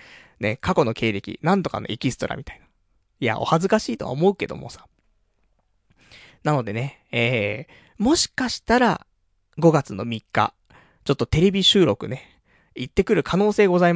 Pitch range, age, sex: 115-190 Hz, 20-39, male